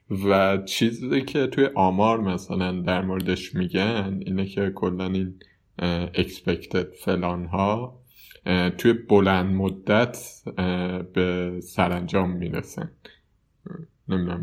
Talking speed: 90 wpm